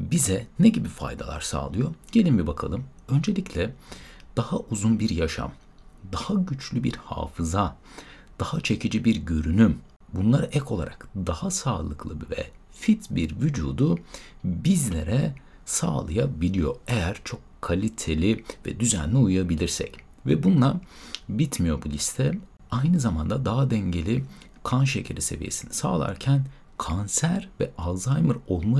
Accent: native